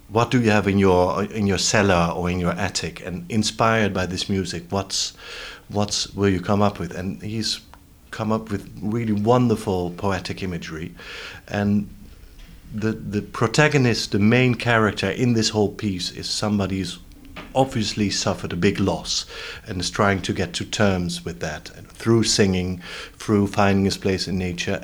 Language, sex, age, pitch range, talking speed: English, male, 50-69, 90-110 Hz, 170 wpm